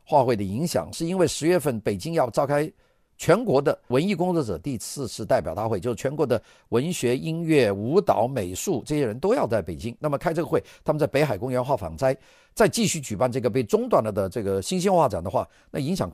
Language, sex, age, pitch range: Chinese, male, 50-69, 115-165 Hz